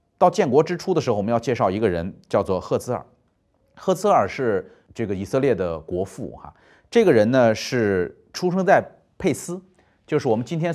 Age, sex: 30-49, male